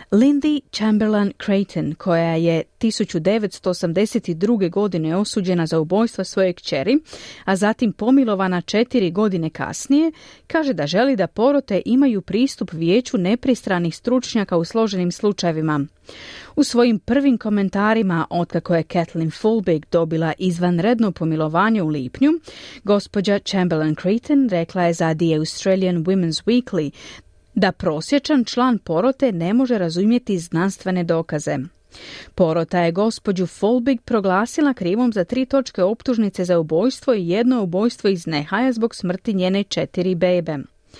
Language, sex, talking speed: Croatian, female, 125 wpm